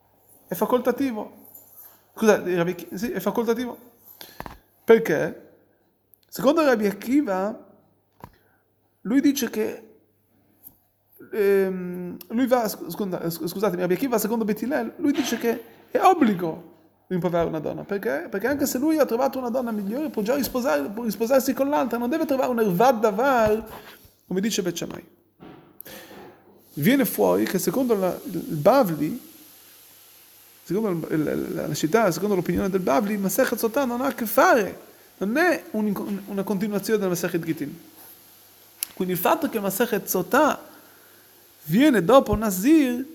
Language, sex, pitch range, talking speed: Italian, male, 190-255 Hz, 120 wpm